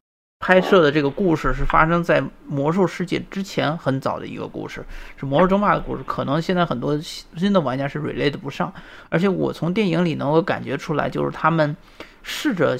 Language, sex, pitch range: Chinese, male, 140-185 Hz